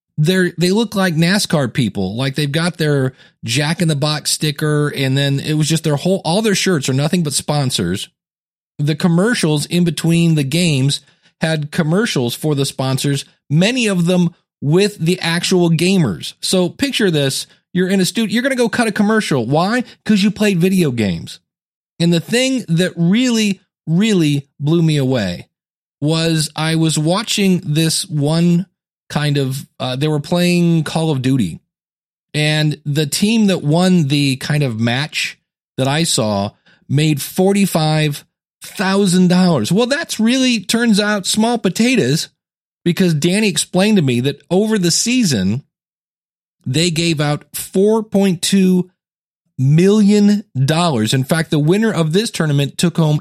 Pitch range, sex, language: 150-190 Hz, male, English